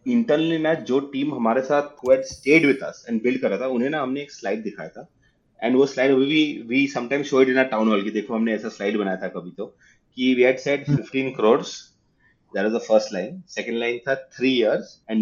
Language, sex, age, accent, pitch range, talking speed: Hindi, male, 30-49, native, 115-165 Hz, 160 wpm